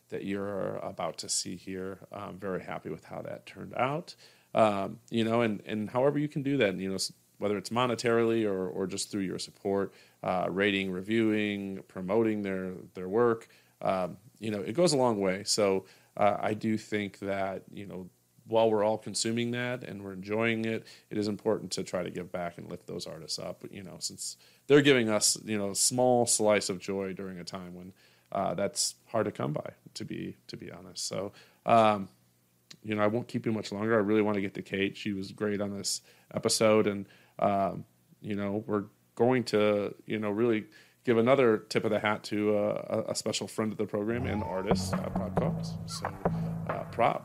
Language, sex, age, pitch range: English, male, 40-59, 95-110 Hz